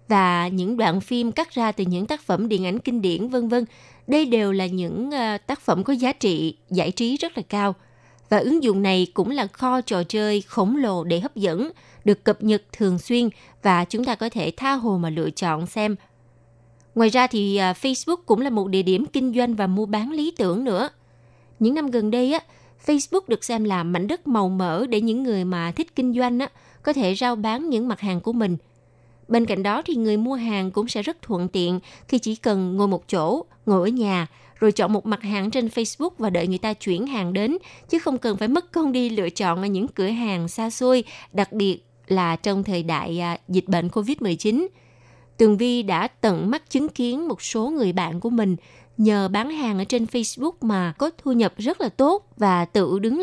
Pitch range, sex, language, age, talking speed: 185-245 Hz, female, Vietnamese, 20-39, 220 wpm